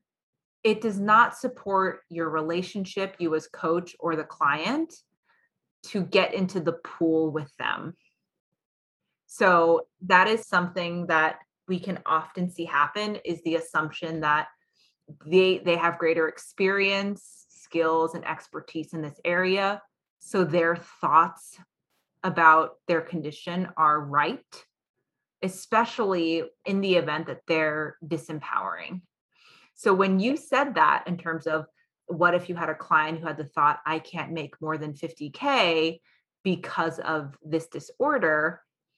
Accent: American